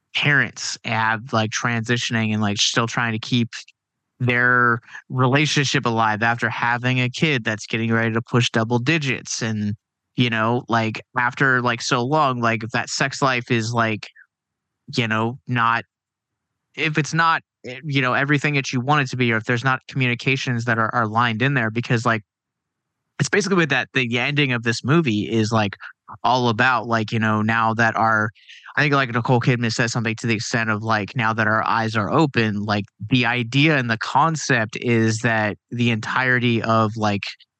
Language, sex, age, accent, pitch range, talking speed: English, male, 20-39, American, 110-130 Hz, 185 wpm